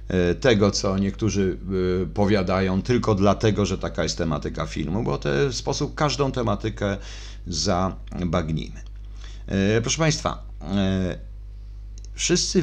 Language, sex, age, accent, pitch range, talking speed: Polish, male, 50-69, native, 85-105 Hz, 100 wpm